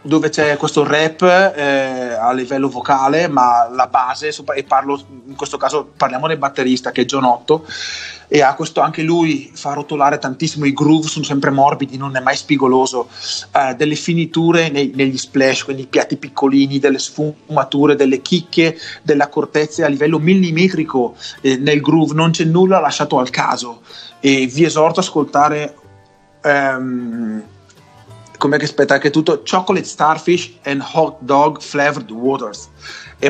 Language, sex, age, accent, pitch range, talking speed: Italian, male, 30-49, native, 135-165 Hz, 160 wpm